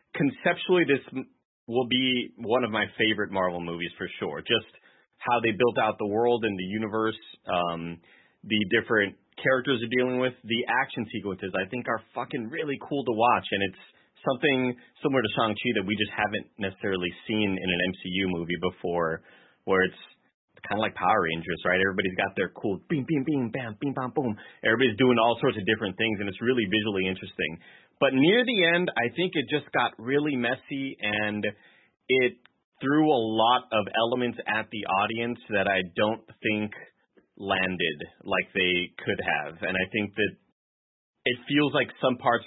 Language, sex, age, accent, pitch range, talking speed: English, male, 30-49, American, 100-125 Hz, 180 wpm